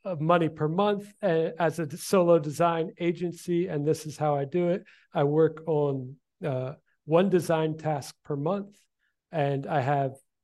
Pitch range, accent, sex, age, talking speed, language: 140-160 Hz, American, male, 40-59, 160 wpm, English